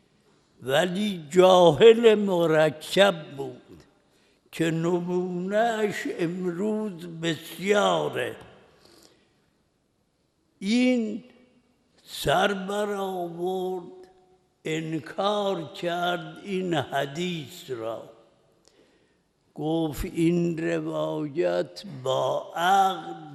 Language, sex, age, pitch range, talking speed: Persian, male, 60-79, 170-230 Hz, 50 wpm